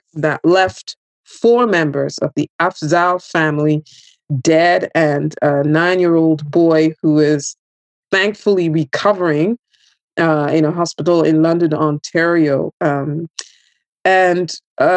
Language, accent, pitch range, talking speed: English, American, 155-200 Hz, 105 wpm